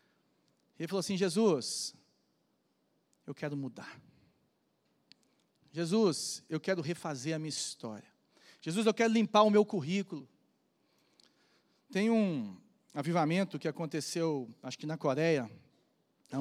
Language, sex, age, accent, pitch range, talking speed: Portuguese, male, 40-59, Brazilian, 150-195 Hz, 115 wpm